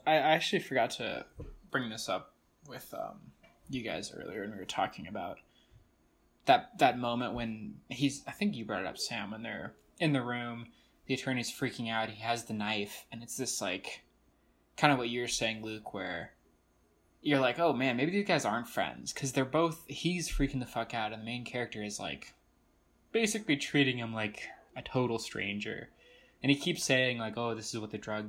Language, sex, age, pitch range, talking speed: English, male, 20-39, 110-140 Hz, 200 wpm